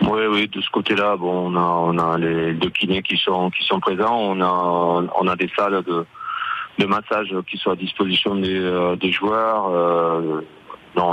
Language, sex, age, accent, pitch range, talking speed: French, male, 30-49, French, 85-100 Hz, 195 wpm